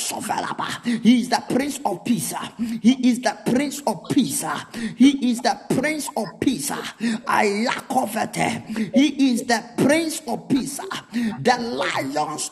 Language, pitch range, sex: Japanese, 230-275 Hz, male